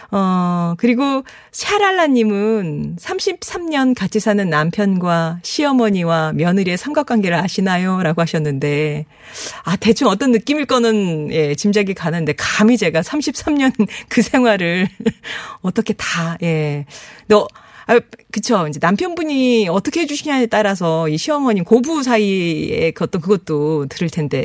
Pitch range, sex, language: 160-235 Hz, female, Korean